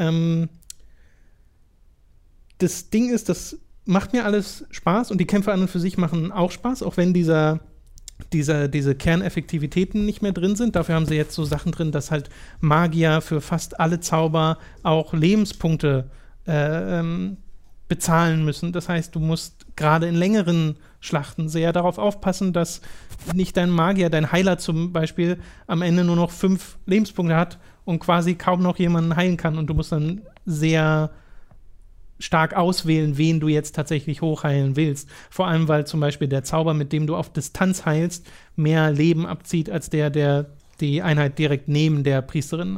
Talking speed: 165 wpm